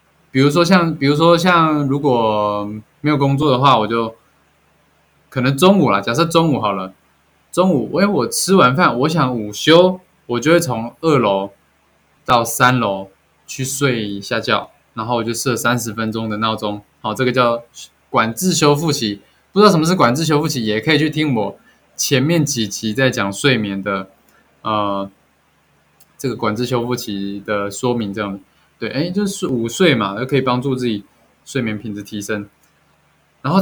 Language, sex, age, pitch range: Chinese, male, 20-39, 105-150 Hz